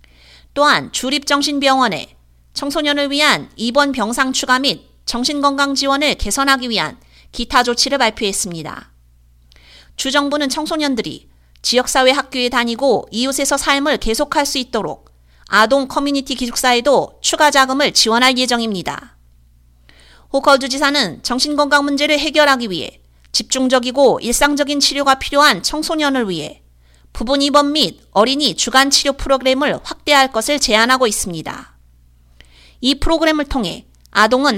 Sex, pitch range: female, 205-285 Hz